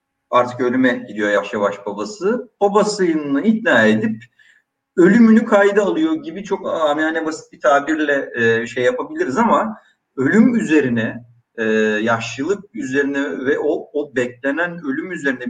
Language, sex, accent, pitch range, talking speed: Turkish, male, native, 125-190 Hz, 125 wpm